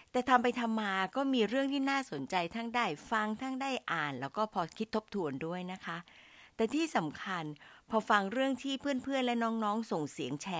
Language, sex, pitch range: Thai, female, 155-225 Hz